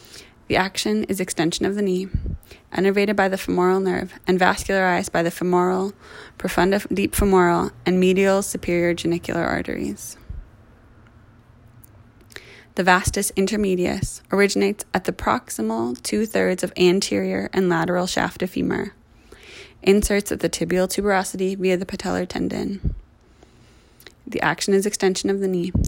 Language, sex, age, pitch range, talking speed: English, female, 20-39, 120-195 Hz, 130 wpm